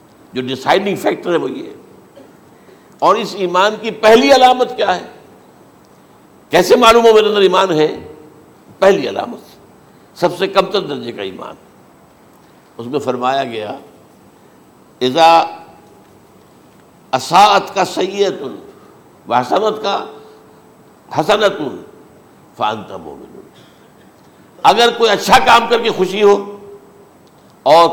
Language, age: Urdu, 60-79